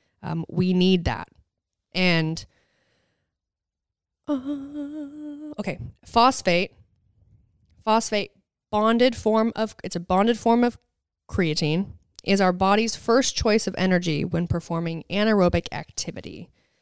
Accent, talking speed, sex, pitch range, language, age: American, 105 wpm, female, 165-210 Hz, English, 20-39